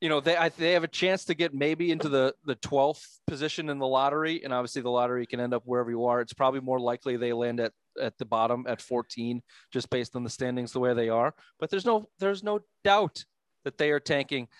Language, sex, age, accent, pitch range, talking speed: English, male, 30-49, American, 125-150 Hz, 245 wpm